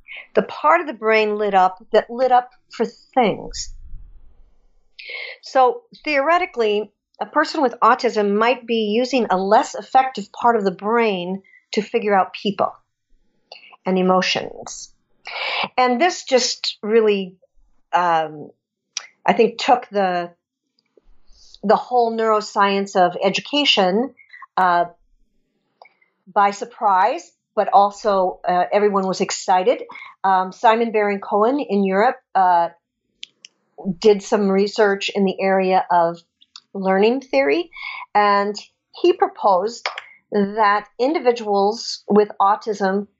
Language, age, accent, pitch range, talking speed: English, 50-69, American, 195-245 Hz, 110 wpm